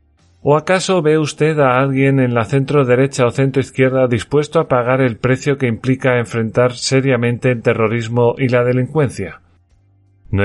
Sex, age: male, 30-49